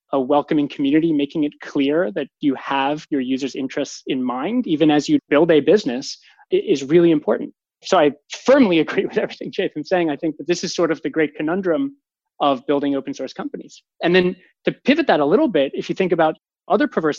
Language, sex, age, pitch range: English, male, 20-39, 150-200 Hz